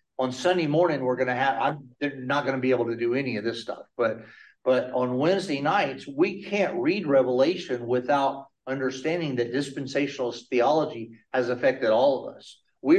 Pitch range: 120-155 Hz